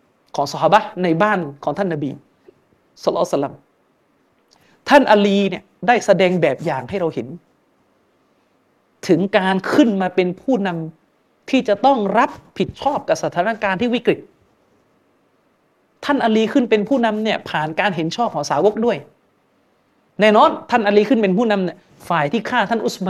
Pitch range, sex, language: 180-230 Hz, male, Thai